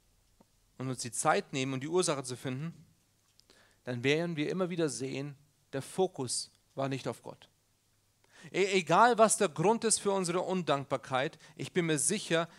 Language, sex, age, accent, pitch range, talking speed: German, male, 40-59, German, 115-180 Hz, 165 wpm